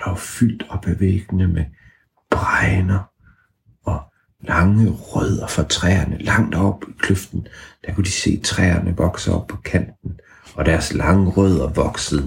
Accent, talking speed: native, 140 wpm